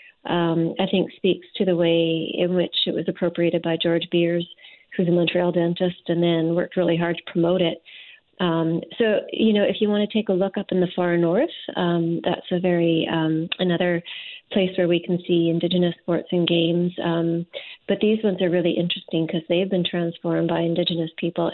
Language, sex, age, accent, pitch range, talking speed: English, female, 40-59, American, 170-185 Hz, 200 wpm